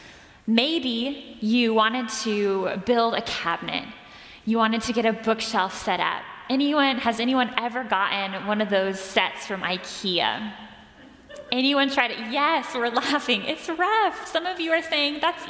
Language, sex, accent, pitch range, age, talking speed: English, female, American, 225-295 Hz, 10-29, 155 wpm